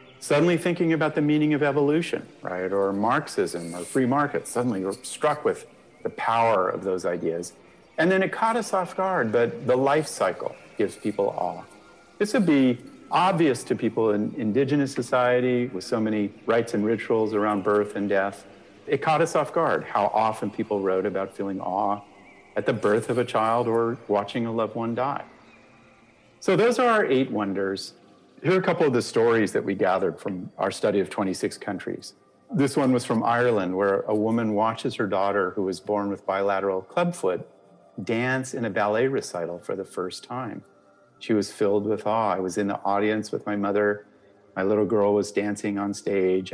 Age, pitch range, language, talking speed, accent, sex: 50-69, 100-125 Hz, English, 190 wpm, American, male